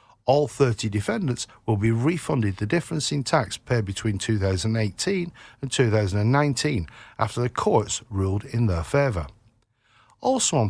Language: English